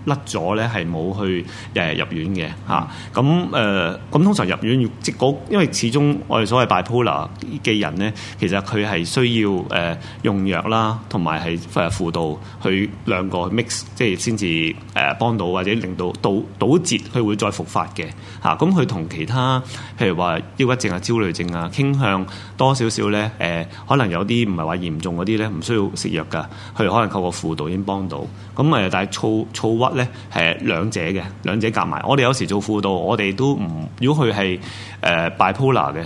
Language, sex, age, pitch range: Chinese, male, 30-49, 95-115 Hz